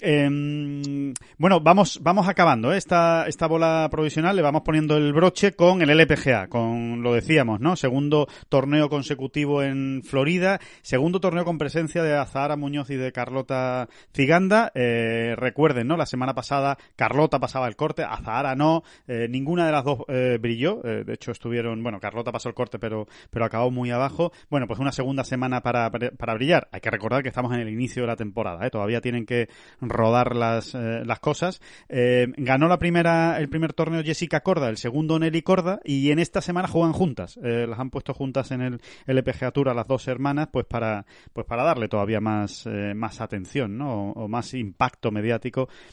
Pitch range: 120-155 Hz